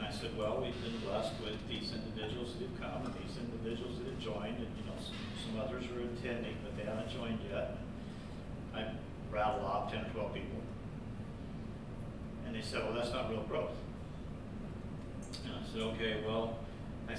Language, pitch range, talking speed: English, 110-130 Hz, 180 wpm